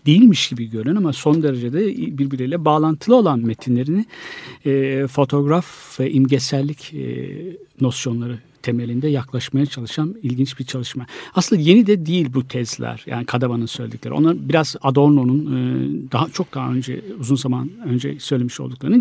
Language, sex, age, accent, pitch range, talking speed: Turkish, male, 60-79, native, 130-165 Hz, 140 wpm